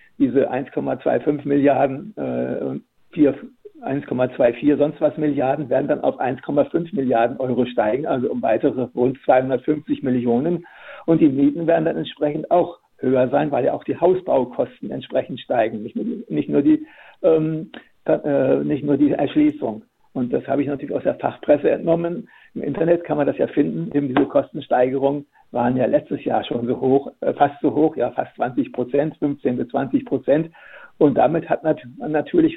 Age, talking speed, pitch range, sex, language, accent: 60-79, 165 wpm, 135-170 Hz, male, German, German